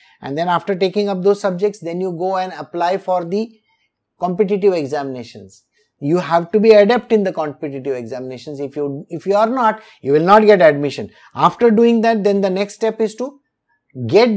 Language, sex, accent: English, male, Indian